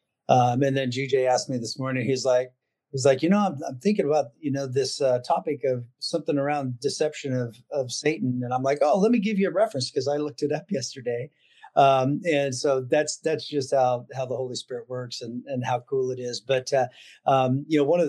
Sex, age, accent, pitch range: male, 40-59, American, 125-150 Hz